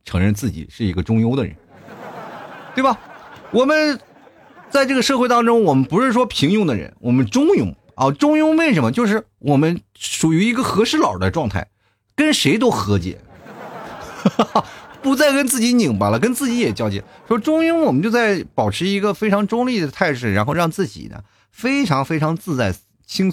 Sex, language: male, Chinese